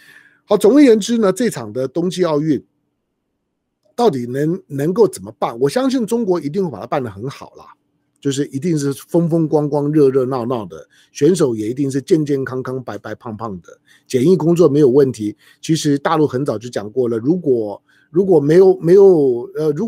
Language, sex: Chinese, male